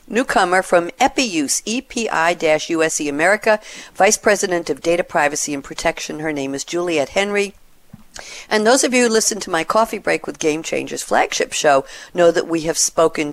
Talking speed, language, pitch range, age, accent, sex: 165 wpm, English, 145-195 Hz, 50-69, American, female